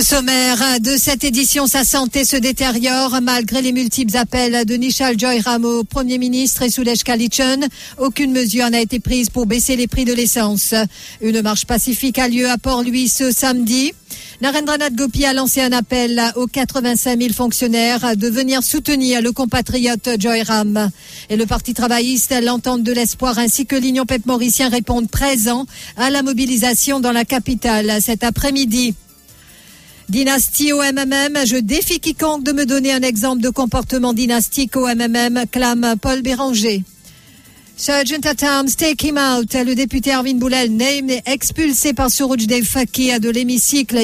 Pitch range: 235-265 Hz